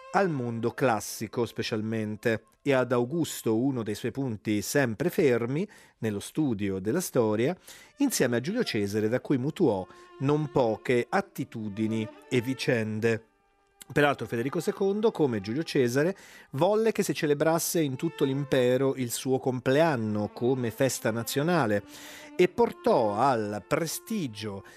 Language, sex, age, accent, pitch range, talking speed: Italian, male, 40-59, native, 115-175 Hz, 125 wpm